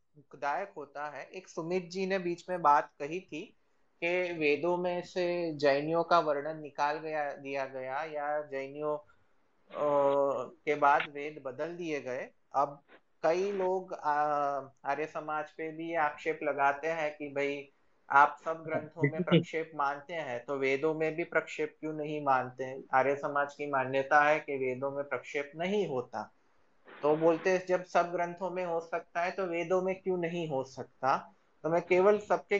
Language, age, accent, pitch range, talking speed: Hindi, 20-39, native, 145-180 Hz, 165 wpm